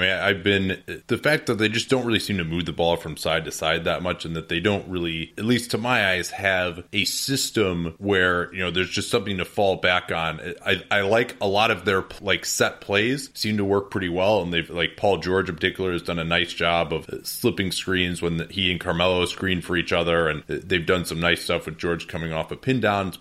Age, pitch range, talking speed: 30-49, 85-100 Hz, 250 wpm